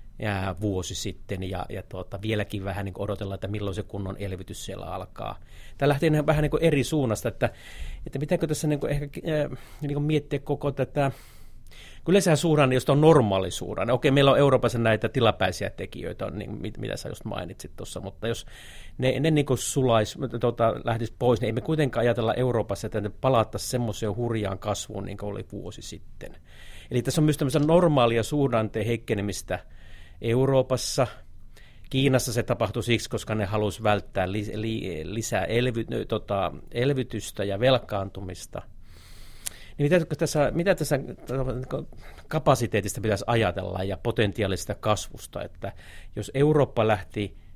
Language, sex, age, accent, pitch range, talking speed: Finnish, male, 30-49, native, 100-130 Hz, 145 wpm